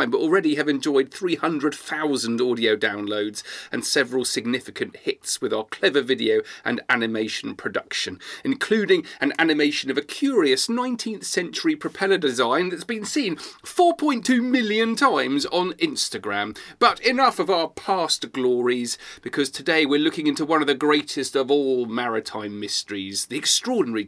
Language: English